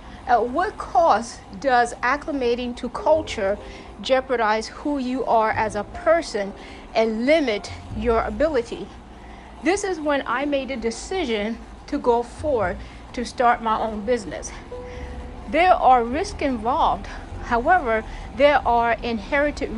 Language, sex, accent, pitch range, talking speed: English, female, American, 235-310 Hz, 125 wpm